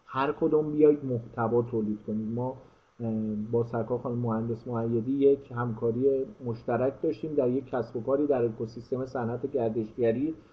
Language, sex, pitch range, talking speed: Persian, male, 120-140 Hz, 140 wpm